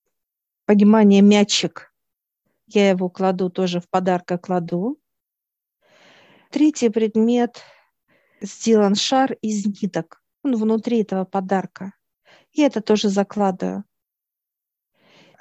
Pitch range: 190-225 Hz